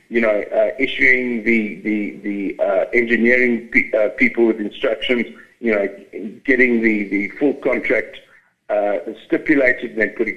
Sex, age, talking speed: male, 60-79, 155 wpm